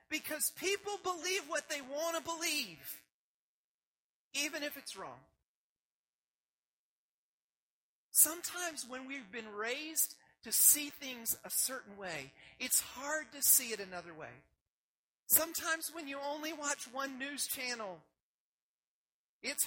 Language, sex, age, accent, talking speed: English, male, 40-59, American, 120 wpm